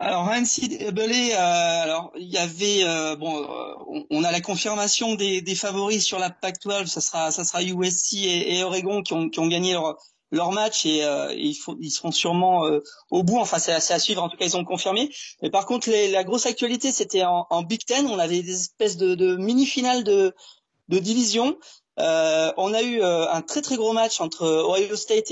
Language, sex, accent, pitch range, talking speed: French, male, French, 175-235 Hz, 225 wpm